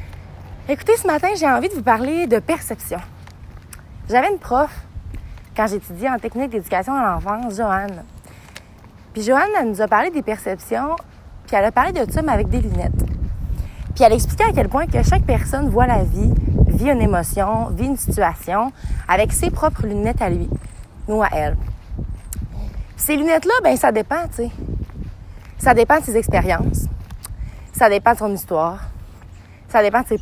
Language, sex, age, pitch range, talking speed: French, female, 20-39, 175-255 Hz, 175 wpm